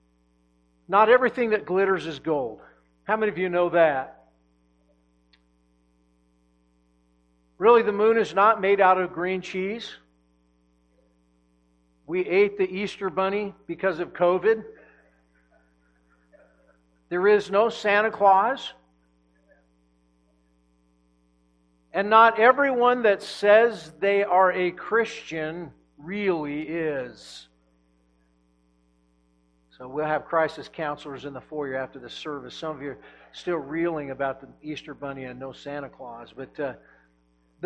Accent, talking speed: American, 115 wpm